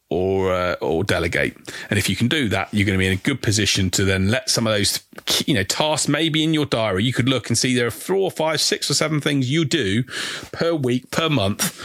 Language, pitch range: English, 105-155 Hz